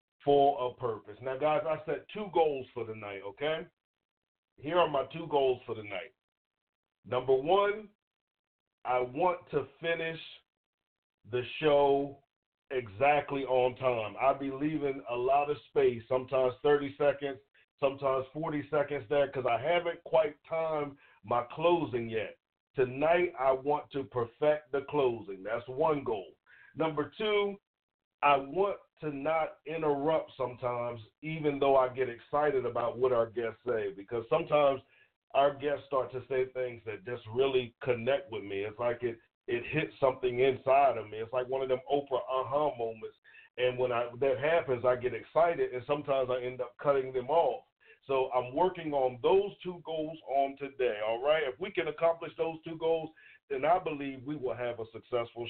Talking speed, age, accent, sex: 170 wpm, 50-69, American, male